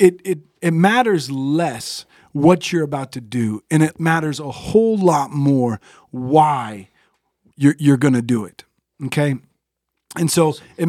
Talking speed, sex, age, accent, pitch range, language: 160 wpm, male, 40-59, American, 130-160 Hz, English